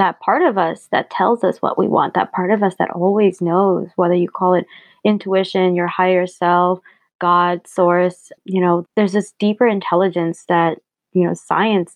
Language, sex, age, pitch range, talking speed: English, female, 20-39, 175-200 Hz, 185 wpm